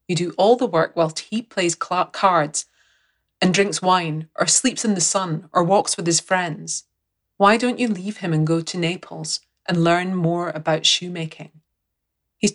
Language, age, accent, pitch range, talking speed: English, 30-49, British, 160-200 Hz, 175 wpm